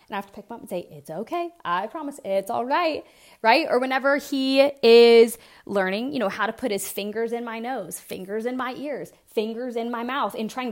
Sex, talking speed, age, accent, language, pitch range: female, 235 wpm, 20-39, American, English, 200-265 Hz